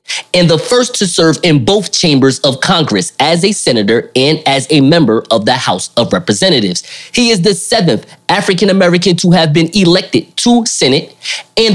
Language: English